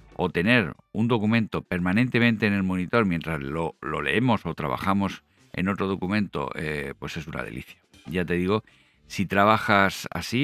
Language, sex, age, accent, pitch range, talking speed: Spanish, male, 50-69, Spanish, 90-120 Hz, 160 wpm